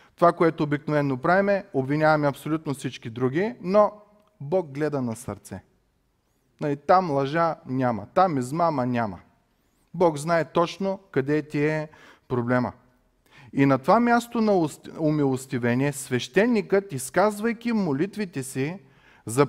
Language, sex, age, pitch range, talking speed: Bulgarian, male, 30-49, 130-185 Hz, 115 wpm